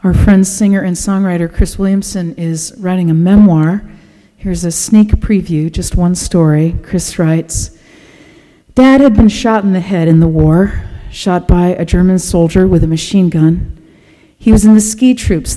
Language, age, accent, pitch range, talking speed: English, 50-69, American, 160-205 Hz, 175 wpm